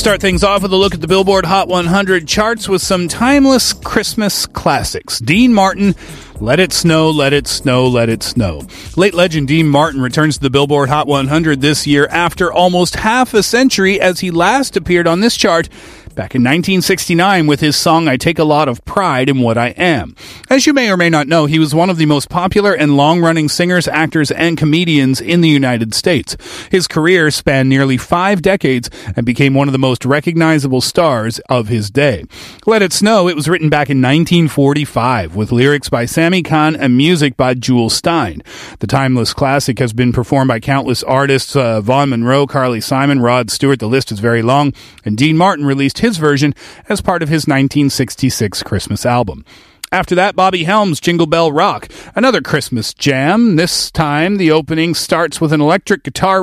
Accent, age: American, 40-59